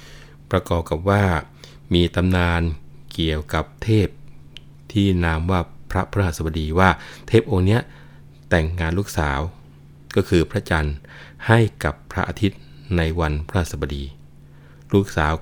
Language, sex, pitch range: Thai, male, 75-90 Hz